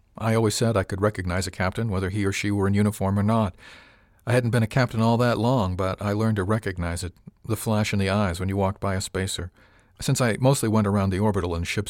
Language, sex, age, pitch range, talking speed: English, male, 50-69, 95-120 Hz, 255 wpm